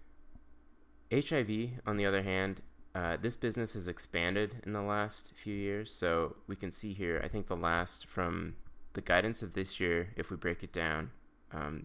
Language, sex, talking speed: English, male, 180 wpm